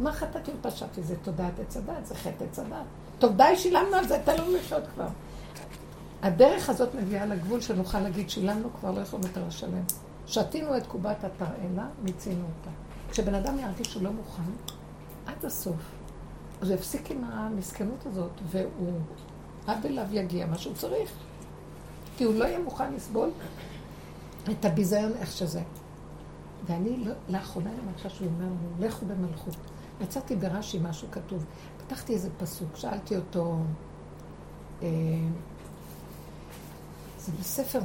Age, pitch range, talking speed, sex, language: 60-79, 175-225 Hz, 140 wpm, female, Hebrew